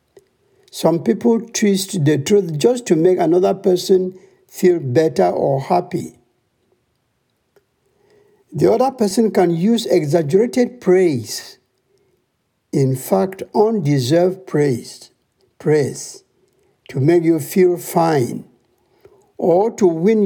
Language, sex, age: English, male, 60-79